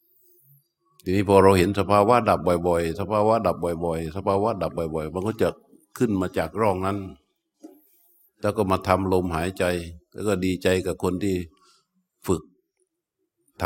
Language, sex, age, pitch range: Thai, male, 60-79, 85-125 Hz